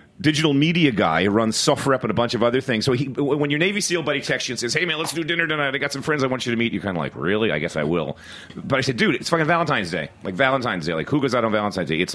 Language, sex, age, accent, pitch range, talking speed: English, male, 40-59, American, 90-130 Hz, 330 wpm